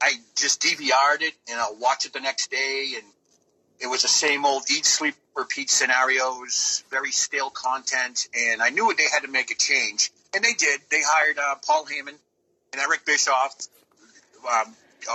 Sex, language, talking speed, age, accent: male, English, 180 wpm, 40-59, American